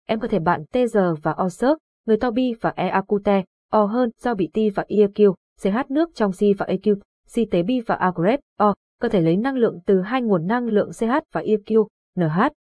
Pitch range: 185-235 Hz